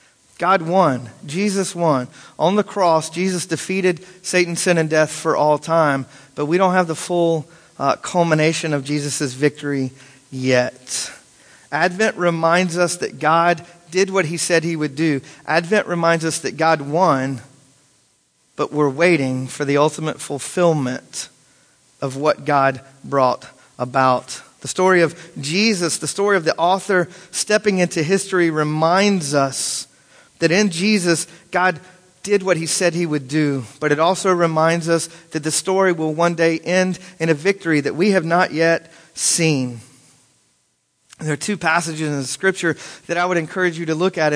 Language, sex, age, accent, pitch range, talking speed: English, male, 40-59, American, 145-180 Hz, 160 wpm